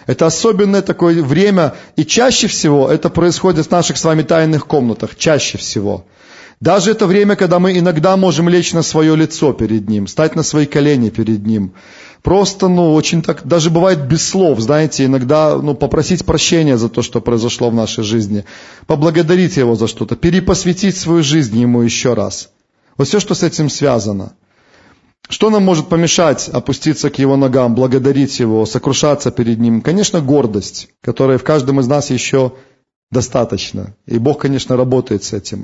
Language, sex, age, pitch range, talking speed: Russian, male, 30-49, 125-165 Hz, 170 wpm